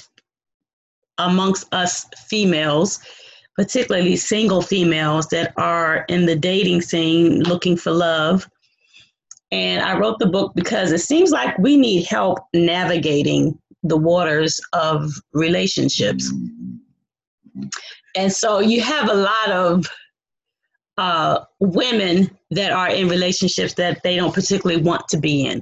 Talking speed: 125 wpm